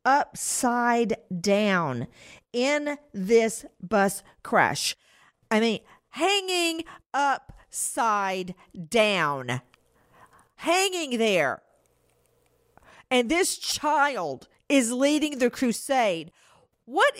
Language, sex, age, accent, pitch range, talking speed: English, female, 50-69, American, 200-280 Hz, 75 wpm